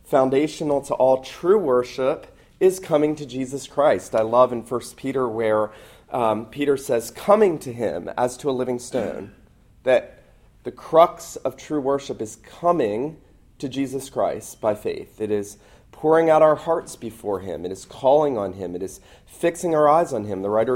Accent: American